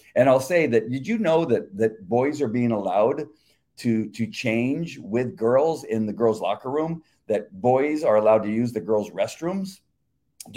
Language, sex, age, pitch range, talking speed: English, male, 50-69, 110-140 Hz, 185 wpm